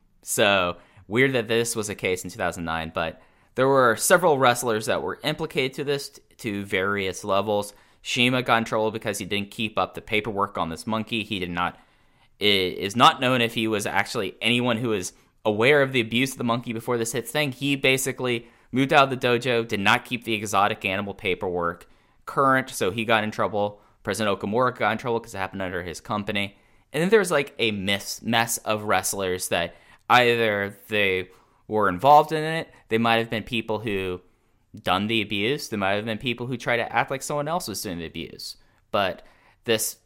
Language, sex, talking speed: English, male, 200 wpm